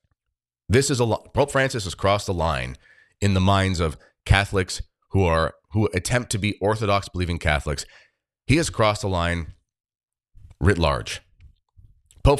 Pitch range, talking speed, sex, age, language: 85-105 Hz, 150 wpm, male, 30-49, English